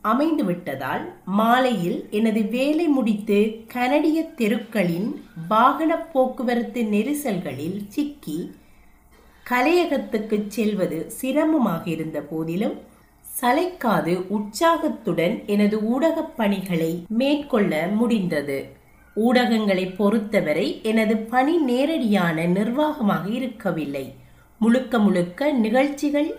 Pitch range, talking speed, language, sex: 195-270 Hz, 75 wpm, Tamil, female